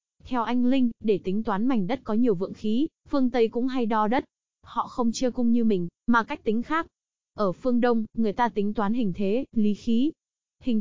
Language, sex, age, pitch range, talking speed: Vietnamese, female, 20-39, 205-250 Hz, 220 wpm